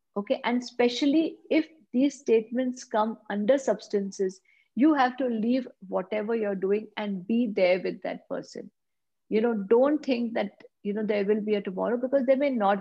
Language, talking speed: English, 180 wpm